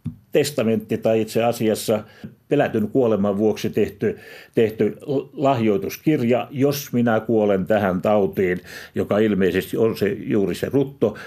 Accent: native